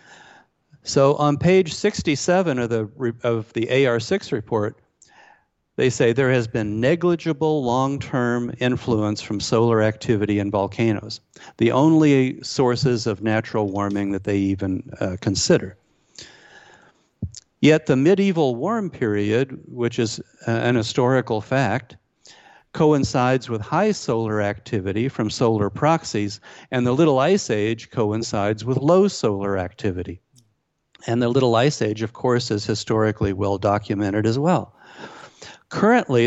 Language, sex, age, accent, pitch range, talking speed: English, male, 50-69, American, 110-135 Hz, 120 wpm